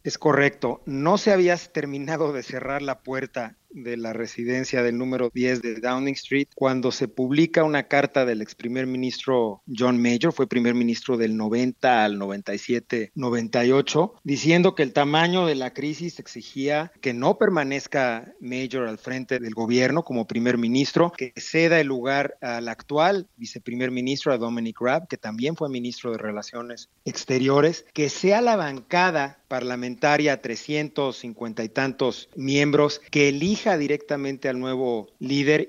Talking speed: 155 wpm